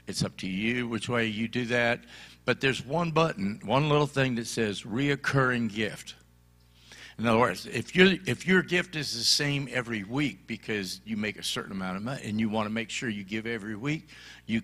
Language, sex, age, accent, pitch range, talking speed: English, male, 60-79, American, 105-140 Hz, 210 wpm